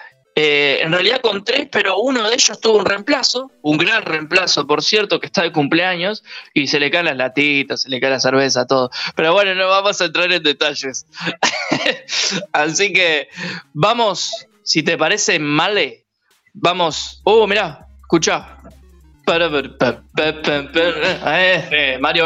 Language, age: Spanish, 20-39